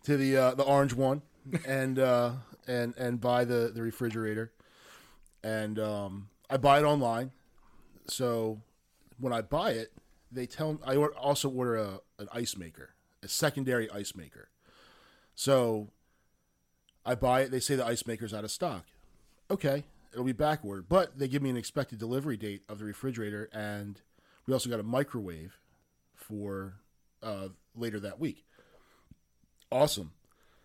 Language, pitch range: English, 105-135 Hz